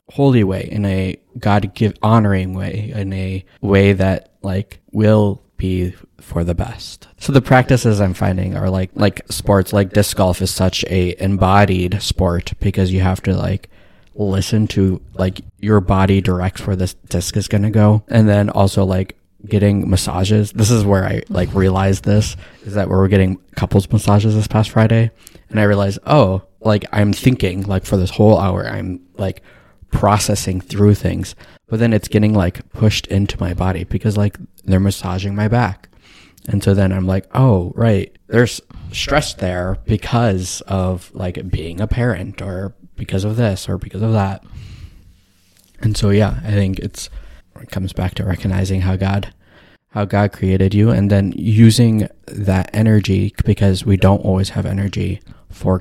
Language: English